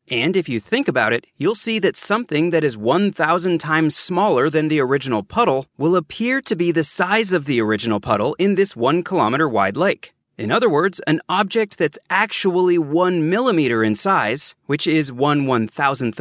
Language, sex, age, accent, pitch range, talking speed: English, male, 30-49, American, 145-190 Hz, 195 wpm